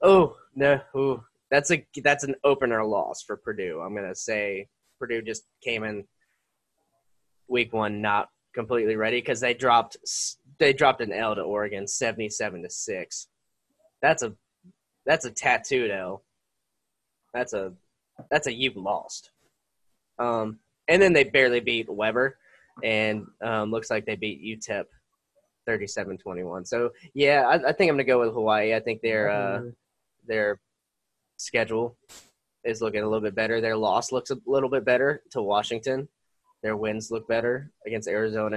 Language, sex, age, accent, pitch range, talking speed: English, male, 10-29, American, 110-160 Hz, 155 wpm